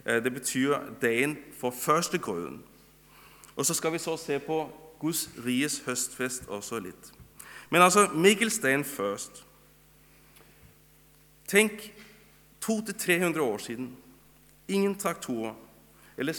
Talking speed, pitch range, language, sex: 110 wpm, 135-175 Hz, Danish, male